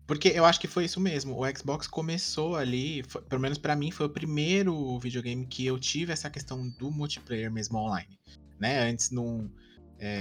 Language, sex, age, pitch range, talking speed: Portuguese, male, 20-39, 110-135 Hz, 195 wpm